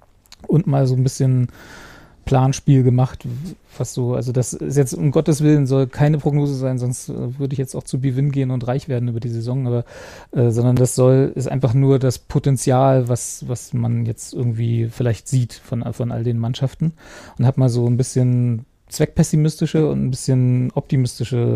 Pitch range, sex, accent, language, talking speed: 125-150 Hz, male, German, German, 185 wpm